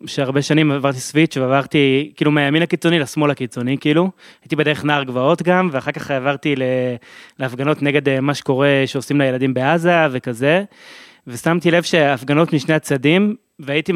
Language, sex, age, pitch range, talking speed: Hebrew, male, 20-39, 140-165 Hz, 145 wpm